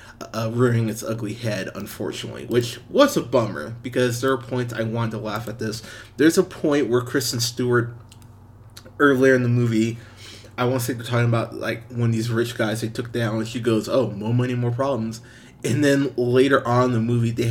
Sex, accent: male, American